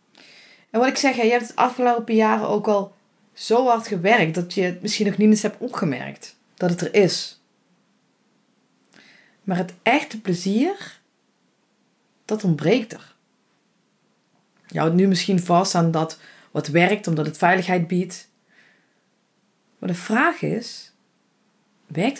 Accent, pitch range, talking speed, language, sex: Dutch, 175-220 Hz, 140 wpm, Dutch, female